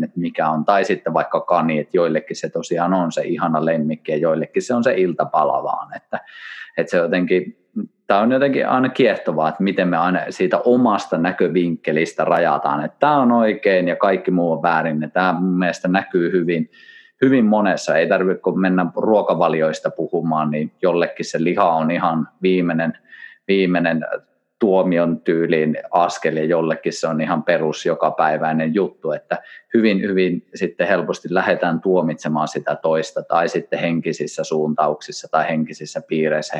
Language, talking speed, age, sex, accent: Finnish, 150 wpm, 30-49, male, native